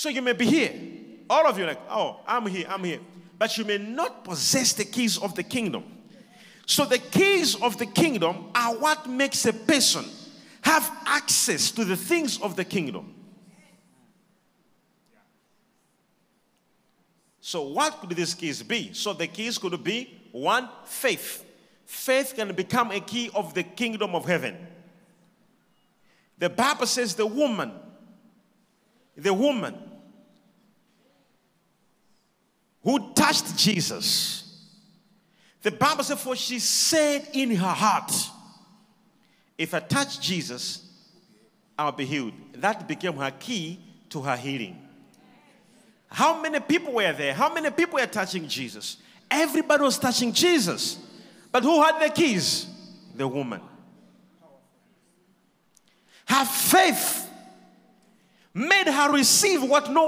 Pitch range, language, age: 190-260 Hz, English, 40-59